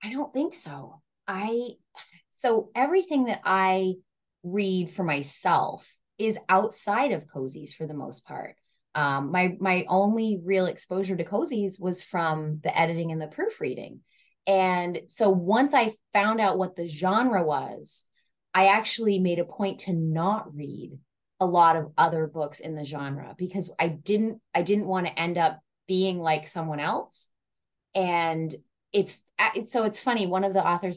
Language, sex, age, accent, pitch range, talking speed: English, female, 20-39, American, 160-205 Hz, 160 wpm